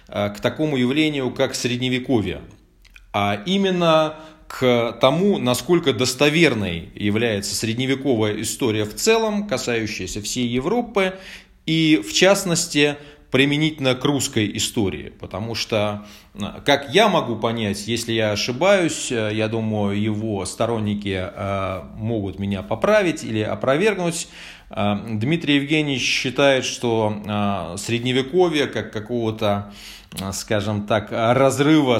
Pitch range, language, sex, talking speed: 110-155 Hz, Russian, male, 100 wpm